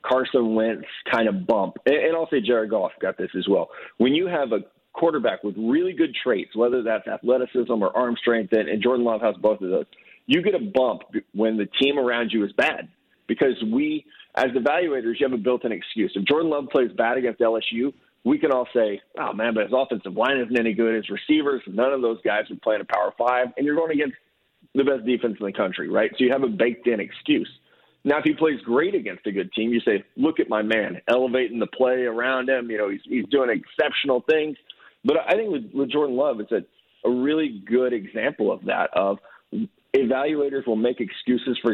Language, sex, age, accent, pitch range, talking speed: English, male, 40-59, American, 115-135 Hz, 220 wpm